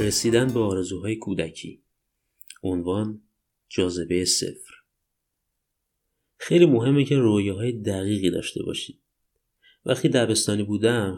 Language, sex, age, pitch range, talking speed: Persian, male, 30-49, 90-125 Hz, 95 wpm